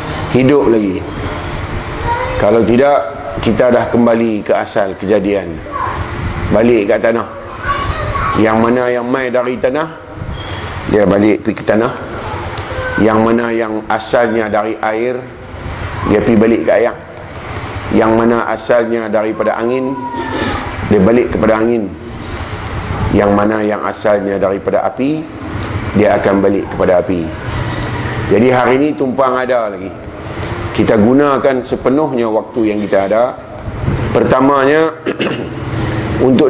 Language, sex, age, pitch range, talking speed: Malay, male, 30-49, 105-125 Hz, 115 wpm